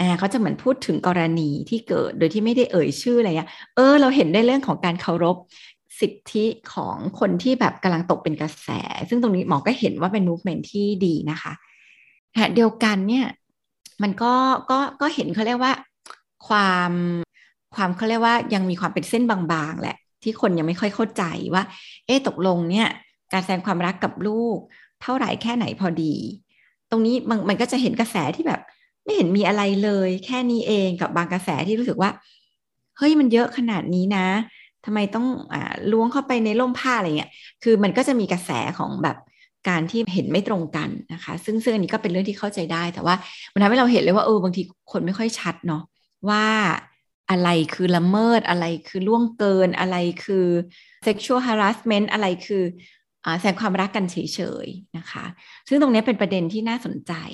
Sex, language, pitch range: female, Thai, 180-230 Hz